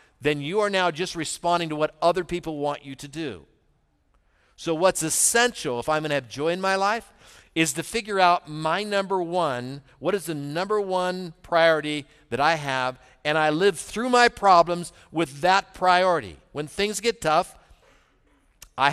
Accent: American